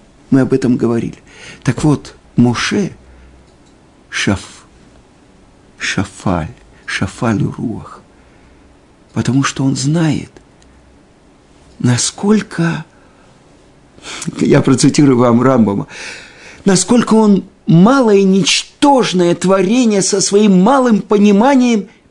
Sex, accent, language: male, native, Russian